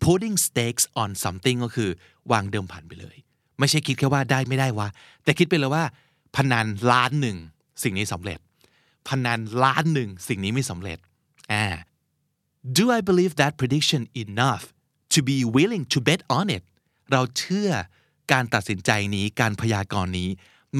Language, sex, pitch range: Thai, male, 105-150 Hz